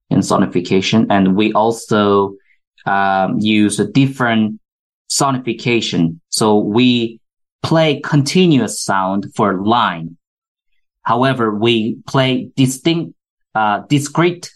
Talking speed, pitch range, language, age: 95 wpm, 105-130 Hz, English, 20-39